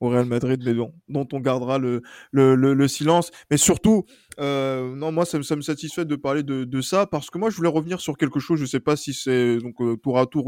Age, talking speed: 20-39, 265 wpm